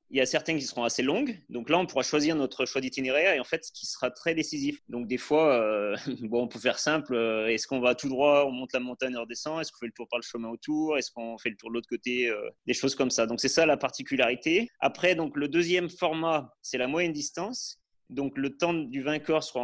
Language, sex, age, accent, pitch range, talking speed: French, male, 30-49, French, 120-150 Hz, 265 wpm